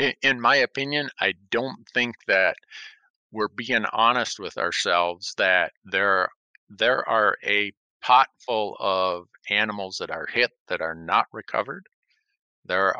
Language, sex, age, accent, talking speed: English, male, 50-69, American, 135 wpm